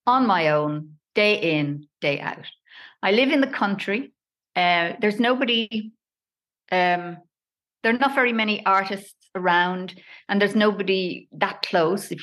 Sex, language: female, English